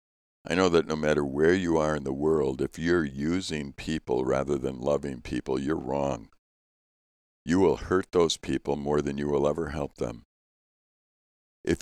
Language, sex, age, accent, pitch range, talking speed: English, male, 60-79, American, 70-85 Hz, 175 wpm